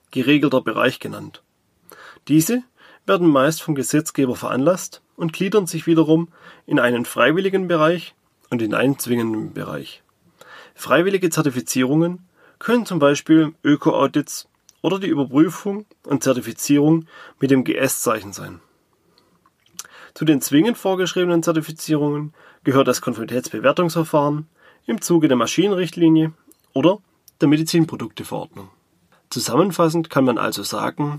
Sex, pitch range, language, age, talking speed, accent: male, 135-170 Hz, German, 30-49, 110 wpm, German